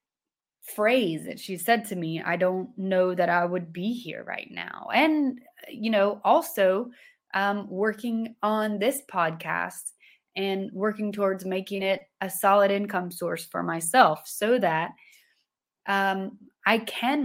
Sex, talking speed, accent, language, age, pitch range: female, 145 wpm, American, English, 20-39, 180-225 Hz